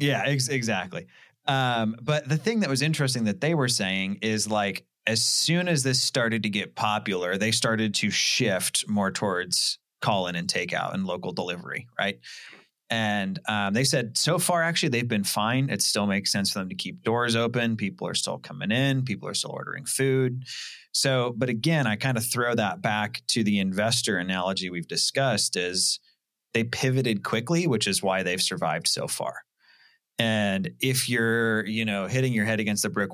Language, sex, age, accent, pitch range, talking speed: English, male, 30-49, American, 100-130 Hz, 190 wpm